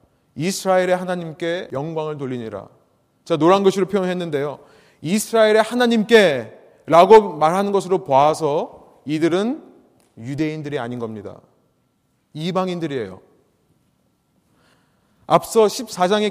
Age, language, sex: 30-49, Korean, male